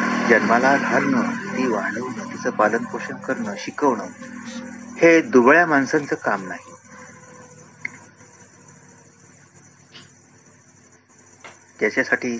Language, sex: Marathi, male